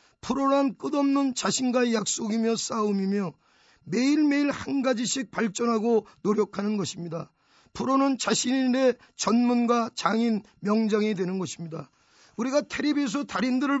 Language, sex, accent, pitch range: Korean, male, native, 210-260 Hz